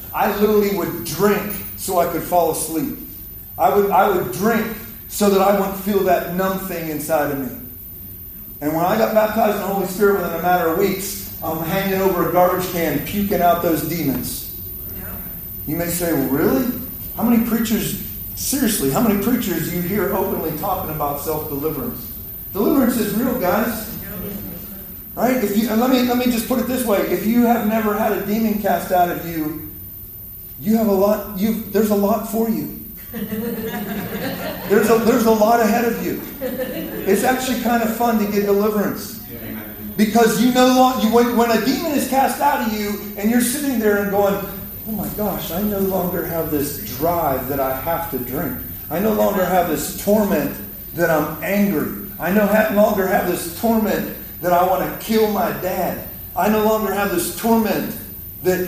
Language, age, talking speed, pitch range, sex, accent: English, 40-59, 190 wpm, 170-220 Hz, male, American